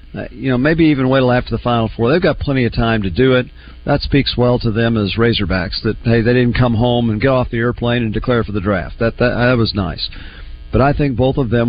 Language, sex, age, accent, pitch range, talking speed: English, male, 50-69, American, 110-140 Hz, 265 wpm